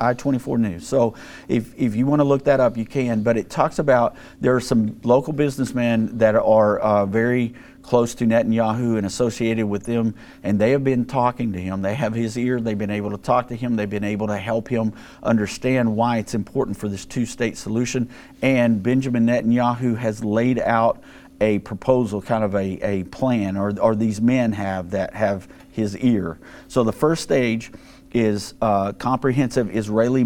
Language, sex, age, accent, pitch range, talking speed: English, male, 50-69, American, 105-125 Hz, 190 wpm